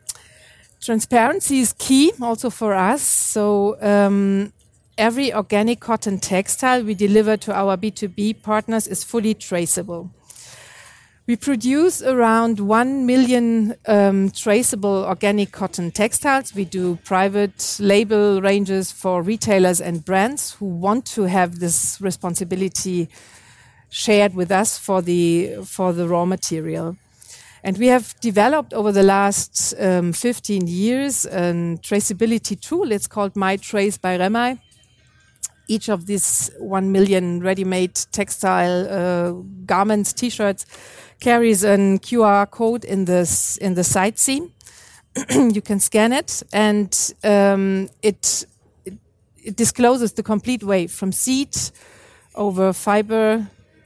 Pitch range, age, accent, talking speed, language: 185-225 Hz, 40-59, German, 125 wpm, English